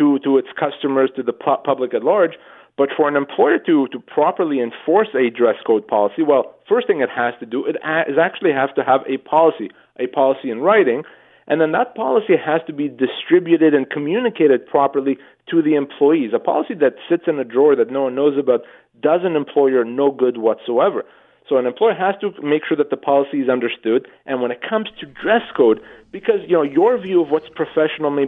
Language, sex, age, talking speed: English, male, 30-49, 210 wpm